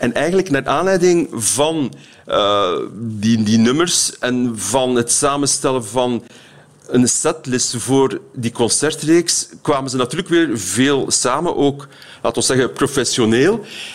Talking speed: 130 wpm